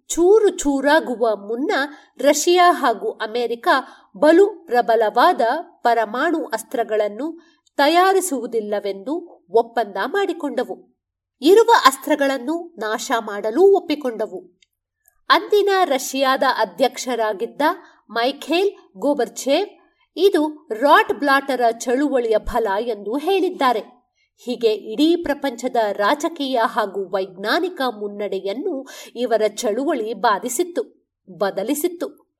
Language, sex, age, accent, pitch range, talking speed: Kannada, female, 50-69, native, 230-340 Hz, 75 wpm